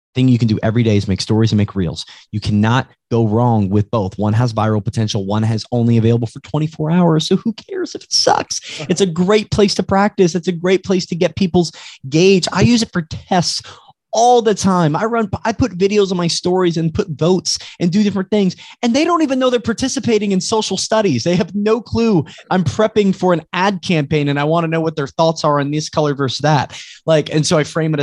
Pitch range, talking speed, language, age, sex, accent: 125-180 Hz, 240 wpm, English, 20-39, male, American